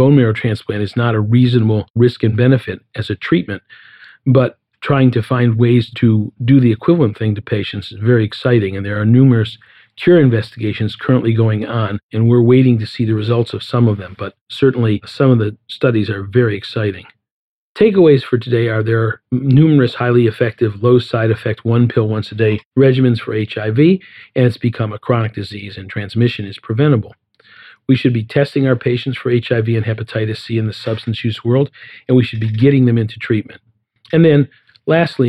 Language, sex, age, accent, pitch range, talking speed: English, male, 50-69, American, 110-125 Hz, 195 wpm